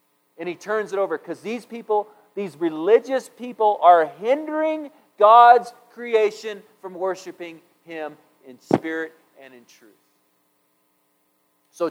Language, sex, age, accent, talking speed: English, male, 40-59, American, 120 wpm